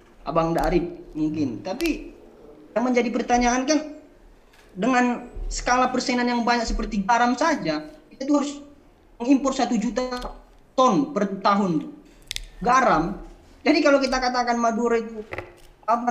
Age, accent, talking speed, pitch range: 20-39, native, 120 wpm, 205-260 Hz